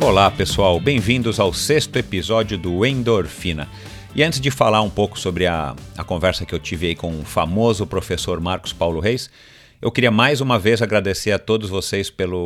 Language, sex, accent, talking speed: Portuguese, male, Brazilian, 185 wpm